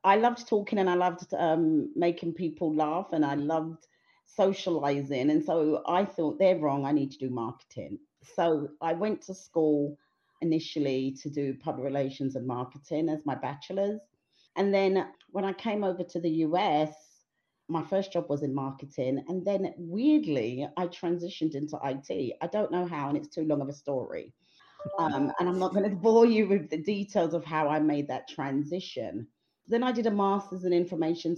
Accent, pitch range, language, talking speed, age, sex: British, 140-190 Hz, English, 185 wpm, 40-59, female